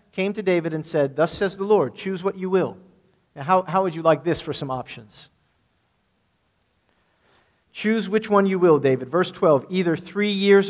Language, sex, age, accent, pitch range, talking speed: English, male, 40-59, American, 140-180 Hz, 190 wpm